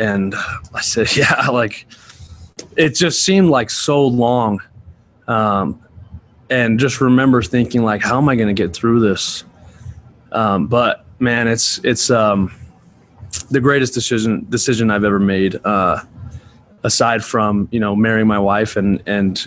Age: 20-39